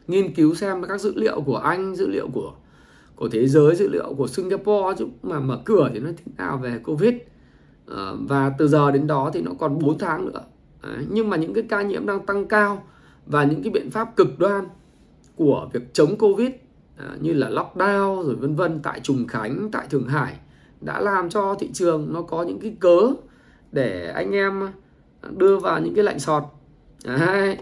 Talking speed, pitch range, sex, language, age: 205 wpm, 145-200 Hz, male, Vietnamese, 20-39